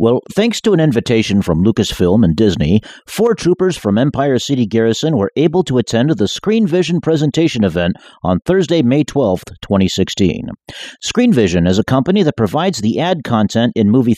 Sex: male